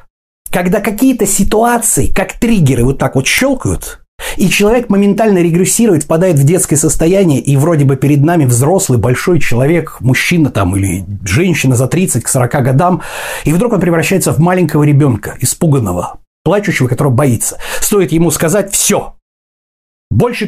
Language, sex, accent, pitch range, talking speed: Russian, male, native, 135-185 Hz, 145 wpm